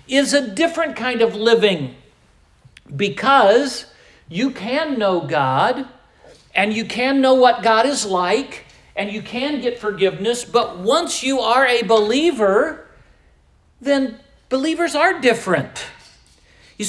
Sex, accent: male, American